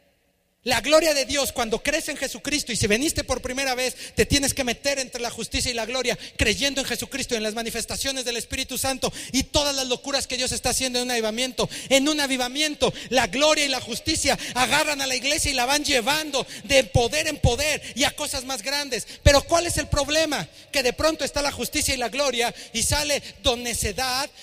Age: 40-59